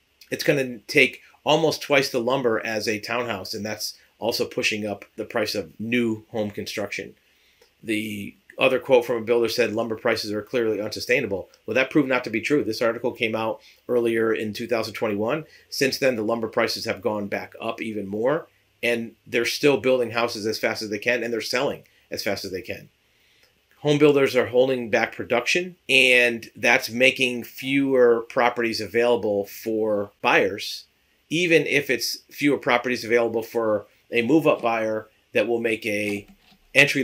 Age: 40-59